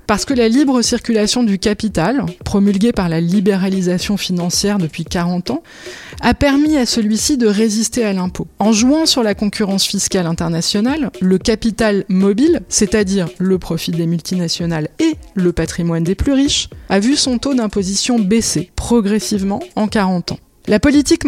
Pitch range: 190-240 Hz